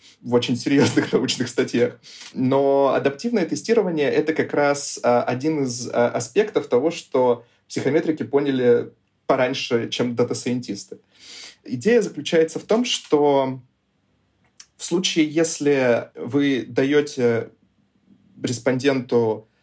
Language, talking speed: Russian, 105 wpm